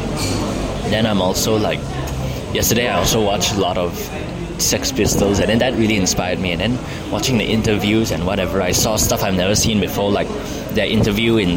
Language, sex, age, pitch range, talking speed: English, male, 20-39, 90-110 Hz, 190 wpm